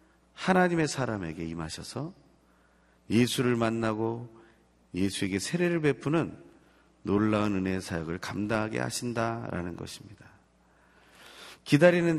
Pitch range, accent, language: 85-135 Hz, native, Korean